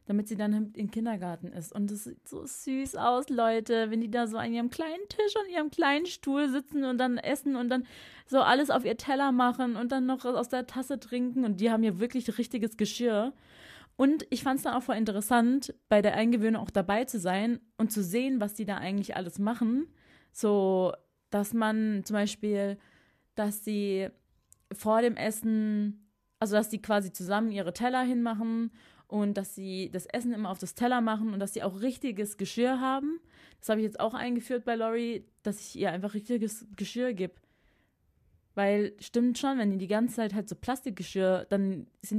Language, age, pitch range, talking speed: German, 20-39, 200-245 Hz, 195 wpm